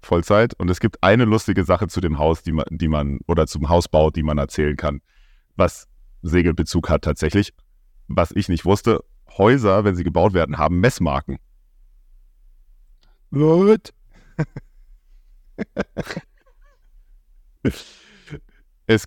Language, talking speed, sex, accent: German, 115 wpm, male, German